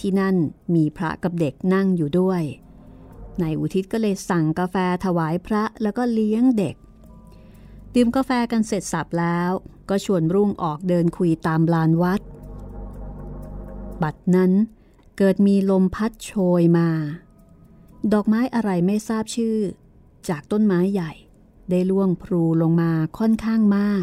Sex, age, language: female, 30-49, Thai